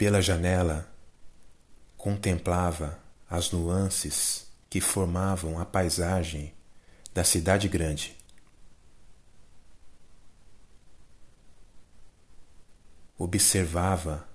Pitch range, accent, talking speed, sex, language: 80-100 Hz, Brazilian, 55 wpm, male, Portuguese